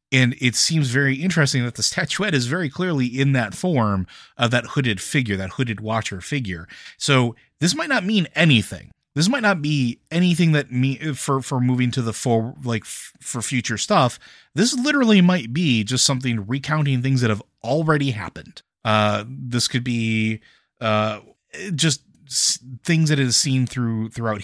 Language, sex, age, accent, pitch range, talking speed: English, male, 30-49, American, 105-135 Hz, 175 wpm